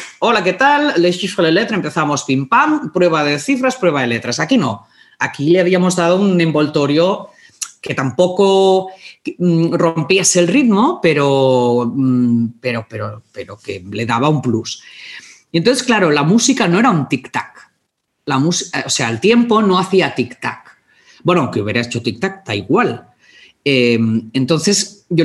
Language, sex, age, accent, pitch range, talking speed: Spanish, female, 40-59, Spanish, 130-200 Hz, 145 wpm